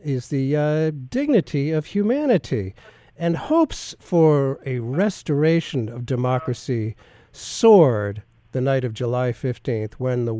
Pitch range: 125-195 Hz